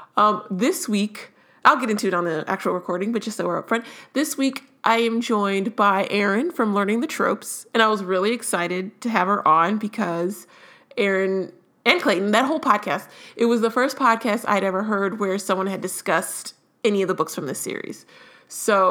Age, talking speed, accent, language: 30-49, 205 wpm, American, English